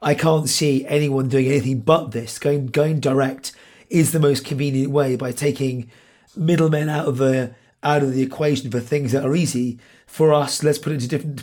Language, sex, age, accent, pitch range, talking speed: English, male, 30-49, British, 135-155 Hz, 205 wpm